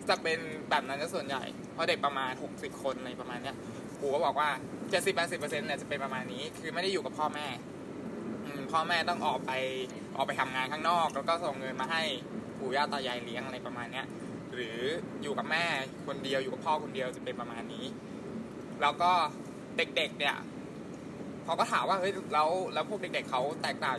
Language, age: Thai, 20-39